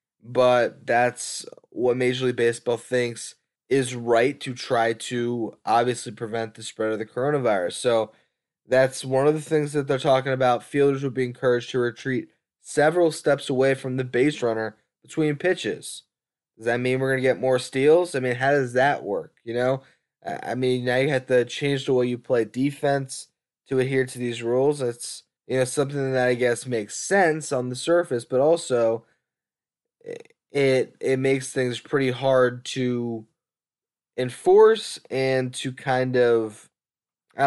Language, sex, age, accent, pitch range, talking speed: English, male, 10-29, American, 120-135 Hz, 170 wpm